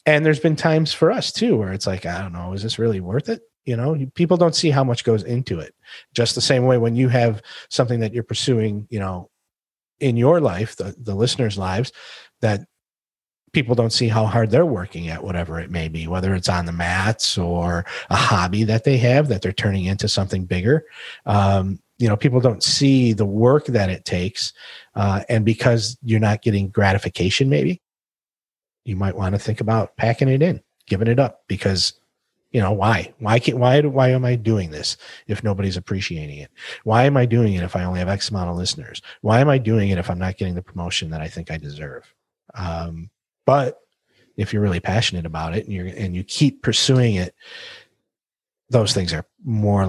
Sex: male